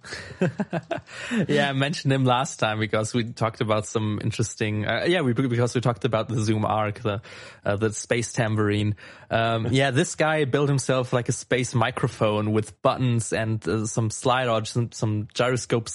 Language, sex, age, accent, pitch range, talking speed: English, male, 20-39, German, 110-135 Hz, 175 wpm